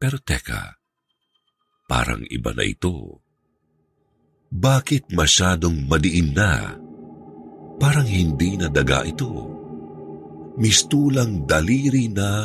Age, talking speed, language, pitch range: 50-69, 80 wpm, Filipino, 80-115 Hz